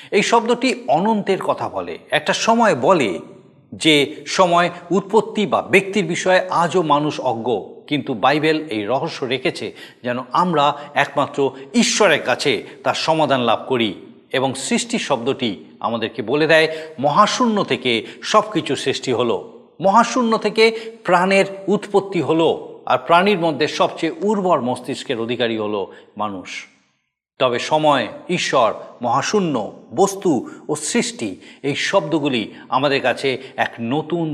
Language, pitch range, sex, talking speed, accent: Bengali, 145-205 Hz, male, 120 wpm, native